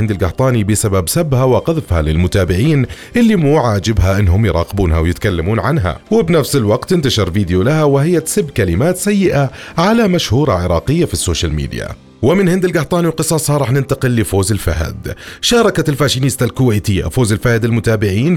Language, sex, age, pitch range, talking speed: Arabic, male, 30-49, 95-140 Hz, 135 wpm